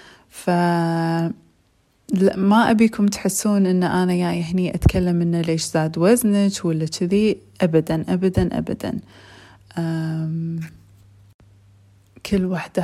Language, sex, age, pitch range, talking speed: Arabic, female, 30-49, 170-200 Hz, 105 wpm